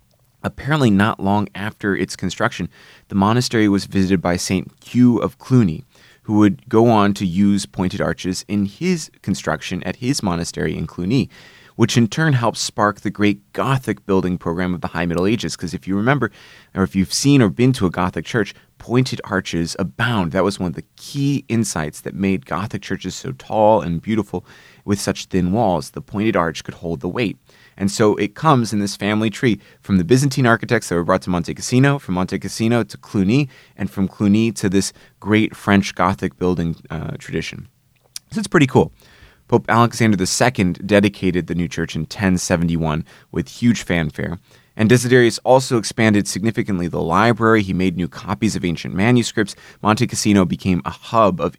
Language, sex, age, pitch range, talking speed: English, male, 30-49, 90-115 Hz, 185 wpm